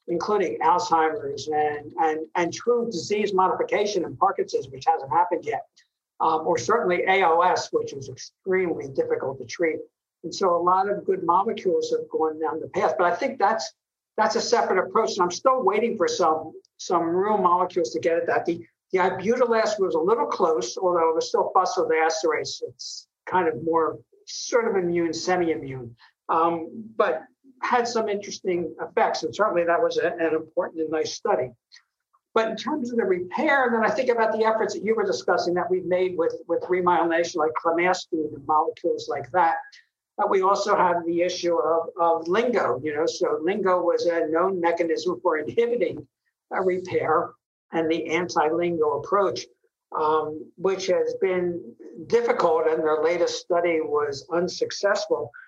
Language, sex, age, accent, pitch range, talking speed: English, male, 60-79, American, 165-275 Hz, 170 wpm